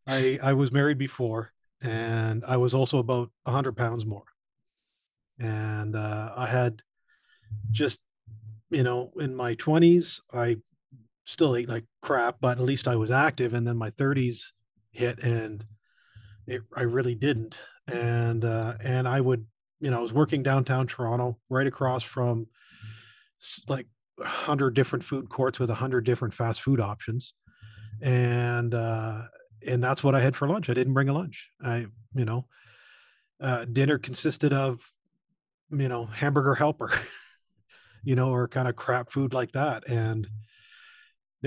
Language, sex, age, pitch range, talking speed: English, male, 40-59, 115-135 Hz, 155 wpm